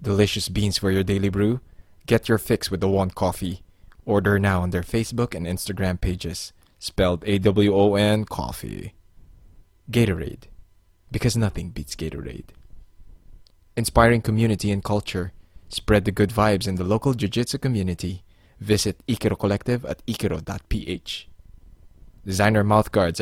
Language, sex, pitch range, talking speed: English, male, 90-115 Hz, 130 wpm